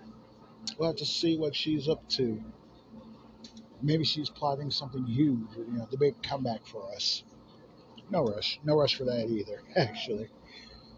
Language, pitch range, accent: English, 125-160 Hz, American